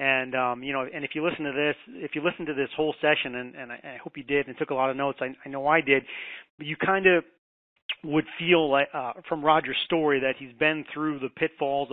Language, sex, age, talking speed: English, male, 30-49, 265 wpm